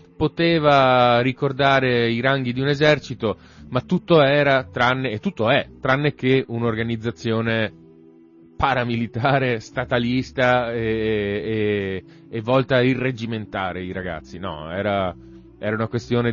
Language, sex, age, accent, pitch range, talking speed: Italian, male, 30-49, native, 95-130 Hz, 120 wpm